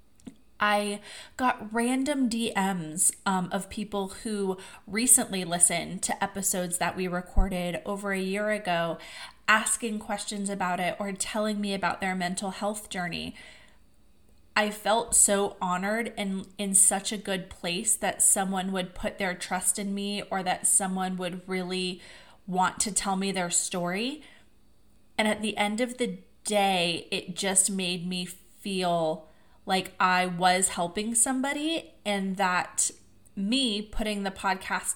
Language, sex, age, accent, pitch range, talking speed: English, female, 20-39, American, 180-215 Hz, 140 wpm